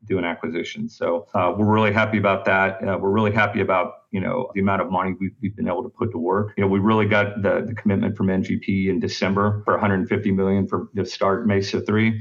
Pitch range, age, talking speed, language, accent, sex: 95-105 Hz, 40-59, 240 wpm, English, American, male